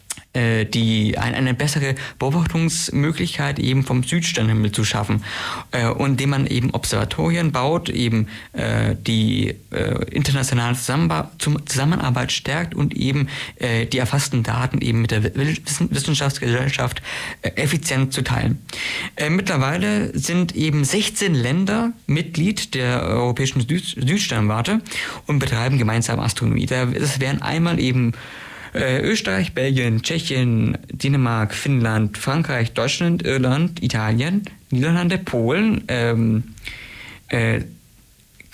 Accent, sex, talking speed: German, male, 100 wpm